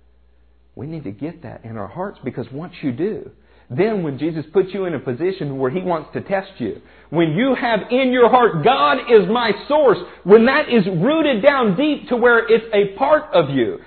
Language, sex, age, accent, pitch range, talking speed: English, male, 50-69, American, 180-275 Hz, 210 wpm